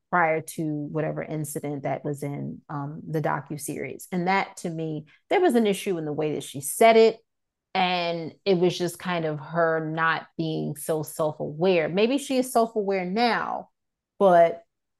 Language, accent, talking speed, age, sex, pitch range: English, American, 180 wpm, 30-49, female, 160-200 Hz